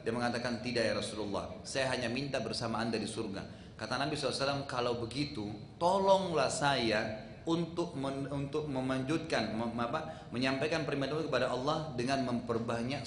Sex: male